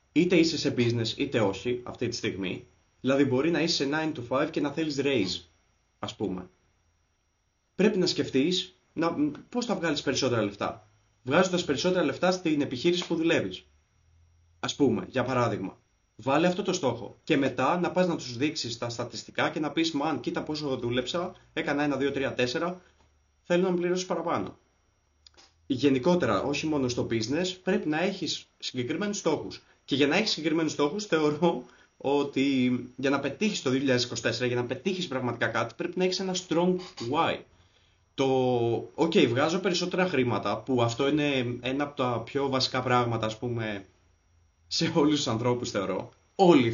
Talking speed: 160 wpm